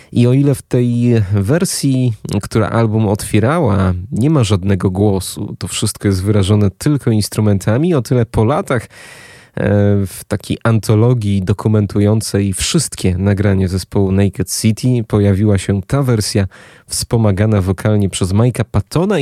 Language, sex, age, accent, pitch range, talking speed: Polish, male, 20-39, native, 100-125 Hz, 130 wpm